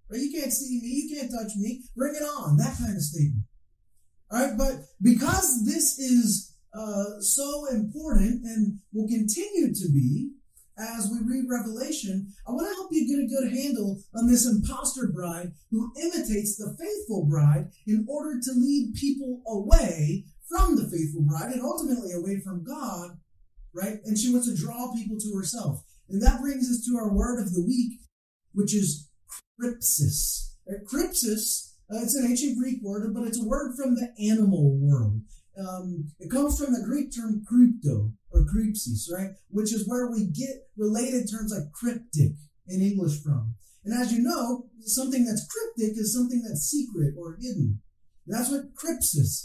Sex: male